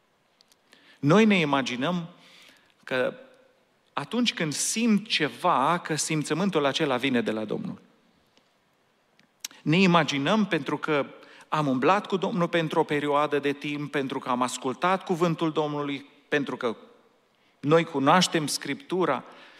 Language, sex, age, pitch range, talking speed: Romanian, male, 40-59, 145-210 Hz, 120 wpm